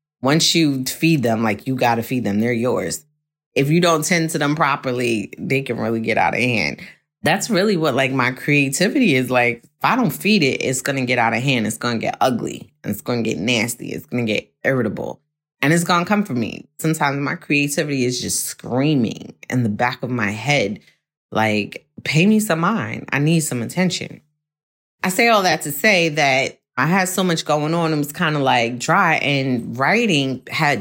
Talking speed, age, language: 220 wpm, 20-39, English